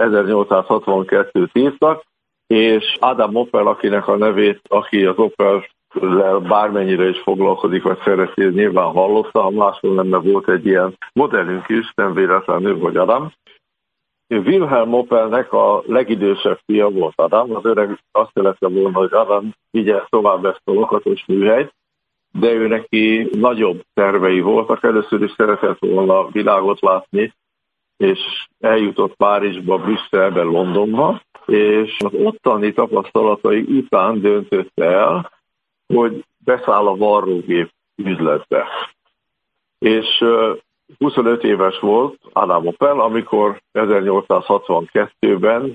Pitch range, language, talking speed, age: 100-115 Hz, Hungarian, 115 wpm, 60-79